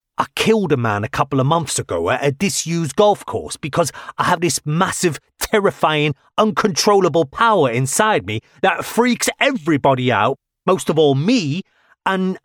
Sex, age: male, 30-49